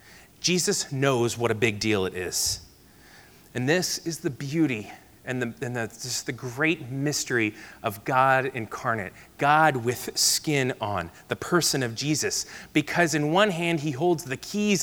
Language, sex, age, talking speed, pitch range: English, male, 30-49, 150 wpm, 115-145 Hz